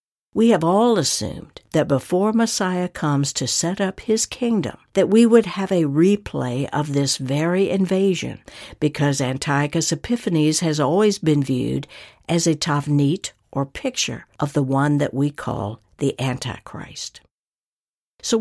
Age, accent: 60-79, American